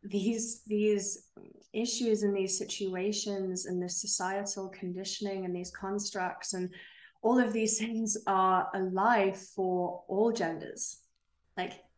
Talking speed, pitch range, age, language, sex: 120 wpm, 180-205 Hz, 20-39, English, female